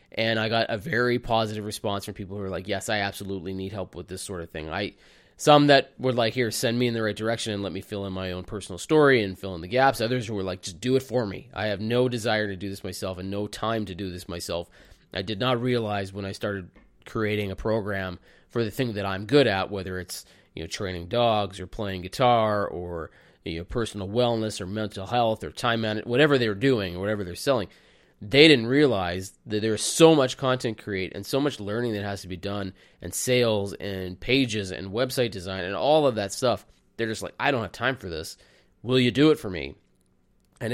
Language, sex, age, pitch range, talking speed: English, male, 20-39, 95-125 Hz, 240 wpm